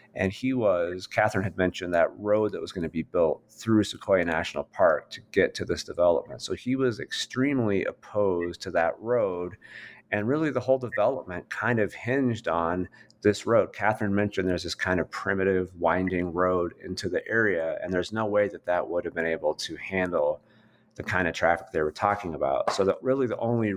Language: English